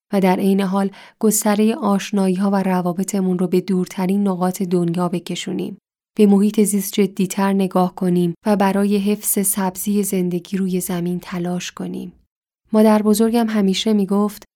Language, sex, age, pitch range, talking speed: Persian, female, 10-29, 185-205 Hz, 135 wpm